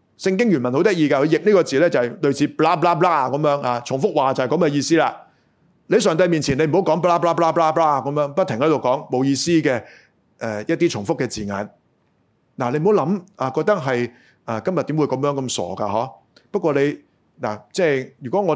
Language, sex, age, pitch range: Chinese, male, 30-49, 120-165 Hz